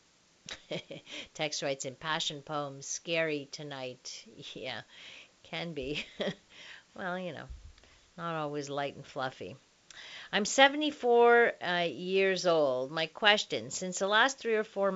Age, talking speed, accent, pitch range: 50-69, 125 wpm, American, 160-205 Hz